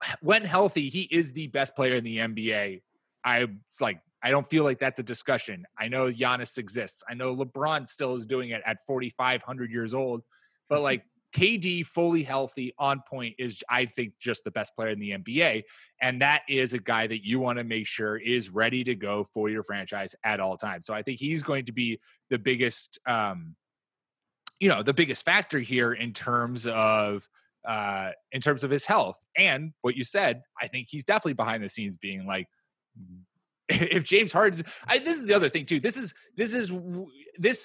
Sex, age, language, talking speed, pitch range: male, 20-39, English, 200 wpm, 120-160 Hz